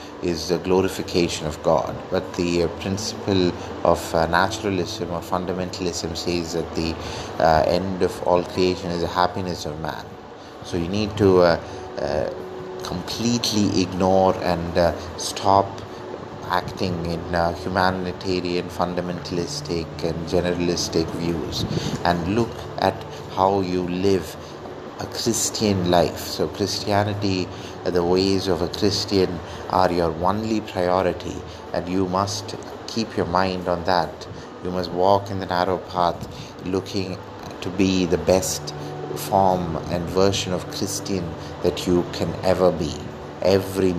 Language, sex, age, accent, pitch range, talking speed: English, male, 30-49, Indian, 85-95 Hz, 130 wpm